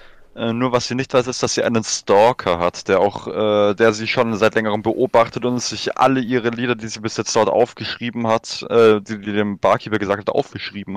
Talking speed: 225 wpm